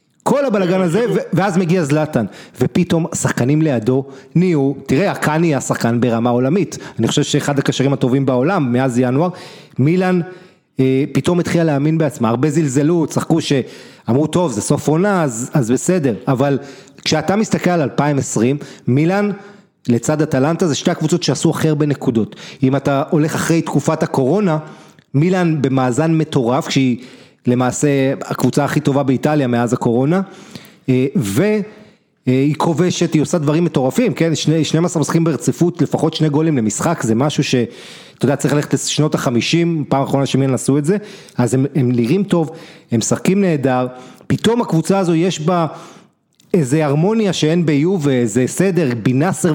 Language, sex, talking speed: Hebrew, male, 145 wpm